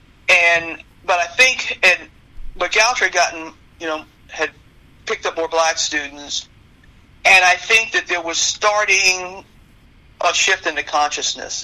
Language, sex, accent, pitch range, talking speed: English, male, American, 145-170 Hz, 145 wpm